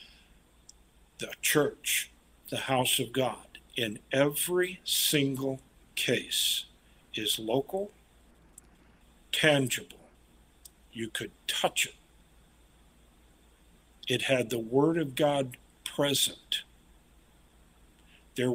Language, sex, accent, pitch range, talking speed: English, male, American, 105-145 Hz, 80 wpm